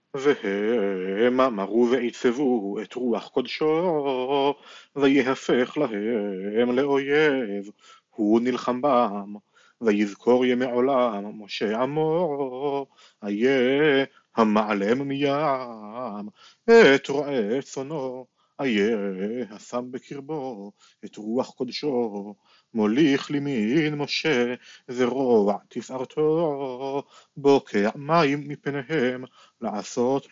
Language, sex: Hebrew, male